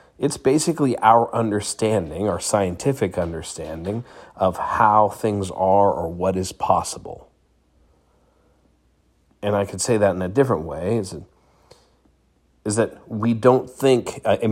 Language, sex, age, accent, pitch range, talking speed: English, male, 40-59, American, 80-110 Hz, 130 wpm